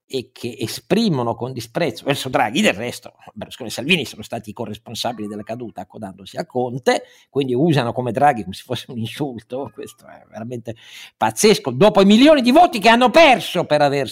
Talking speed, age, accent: 185 wpm, 50-69, native